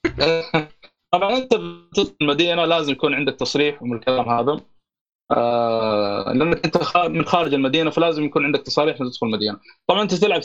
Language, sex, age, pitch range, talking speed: Arabic, male, 20-39, 140-205 Hz, 150 wpm